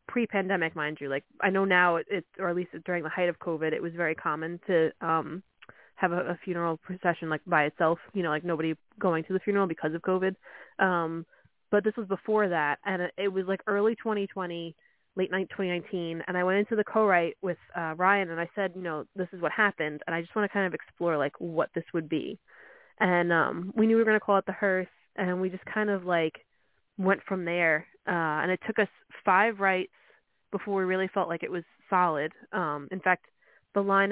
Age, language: 20-39, English